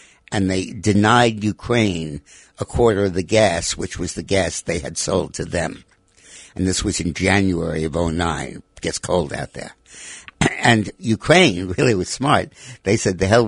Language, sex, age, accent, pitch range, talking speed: English, male, 60-79, American, 90-115 Hz, 175 wpm